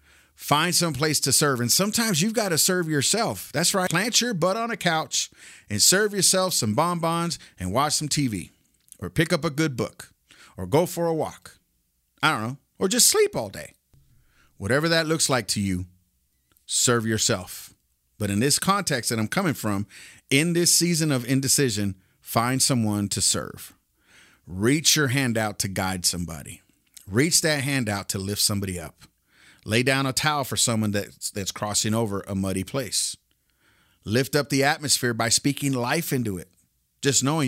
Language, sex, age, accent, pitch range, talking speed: English, male, 40-59, American, 100-160 Hz, 180 wpm